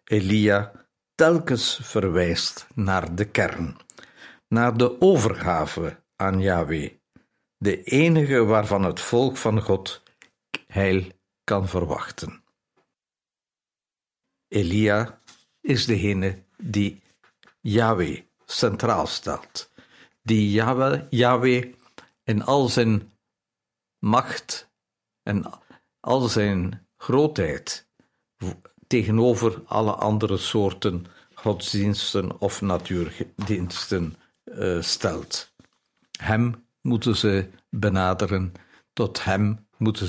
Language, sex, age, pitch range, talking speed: Dutch, male, 60-79, 95-120 Hz, 80 wpm